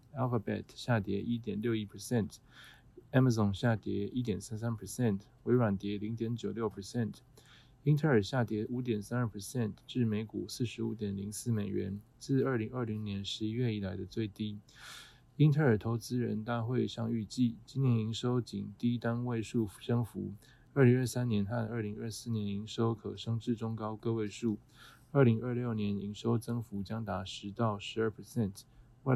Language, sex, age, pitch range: Chinese, male, 20-39, 105-120 Hz